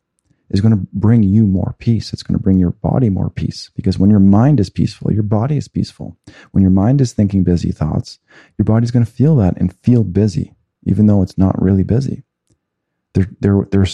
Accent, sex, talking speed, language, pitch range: American, male, 215 wpm, English, 90-110 Hz